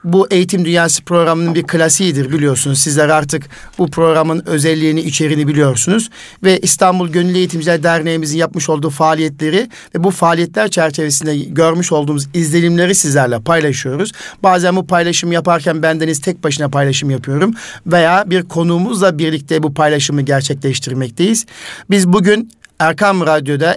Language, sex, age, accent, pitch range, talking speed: Turkish, male, 50-69, native, 150-180 Hz, 130 wpm